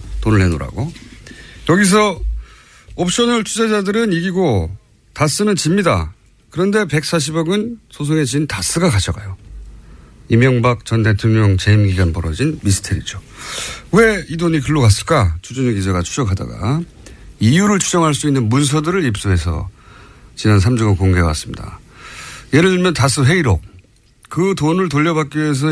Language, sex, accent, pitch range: Korean, male, native, 105-165 Hz